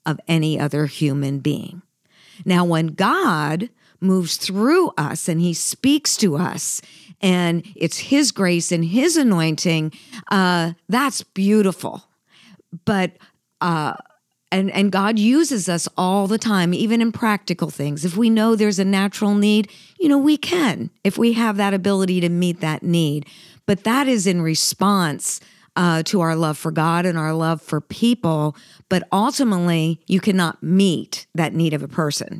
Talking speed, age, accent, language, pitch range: 160 wpm, 50-69, American, English, 165-205 Hz